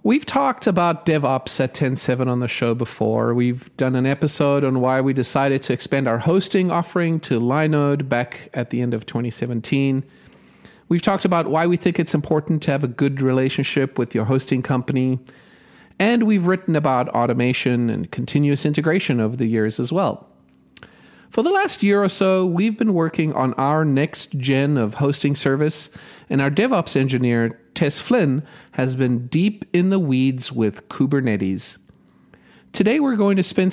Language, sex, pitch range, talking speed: English, male, 125-175 Hz, 170 wpm